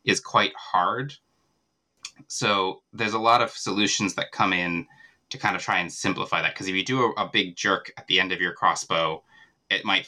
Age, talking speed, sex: 20-39, 210 wpm, male